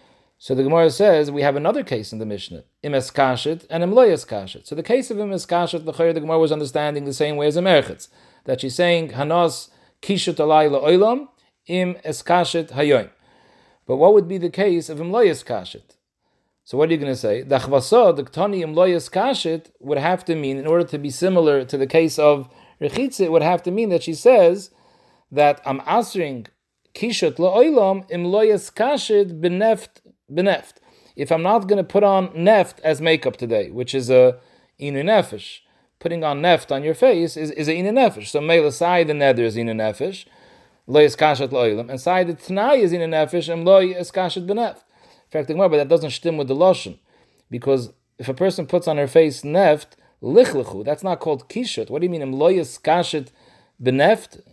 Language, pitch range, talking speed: English, 145-185 Hz, 185 wpm